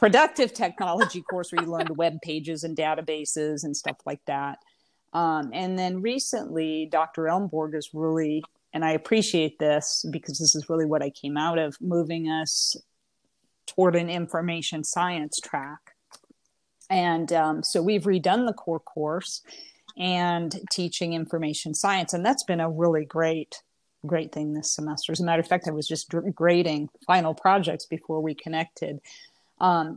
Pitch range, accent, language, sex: 160-195 Hz, American, English, female